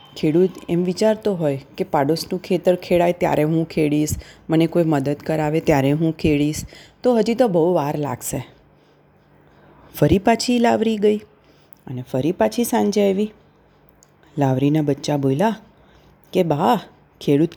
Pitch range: 150-220 Hz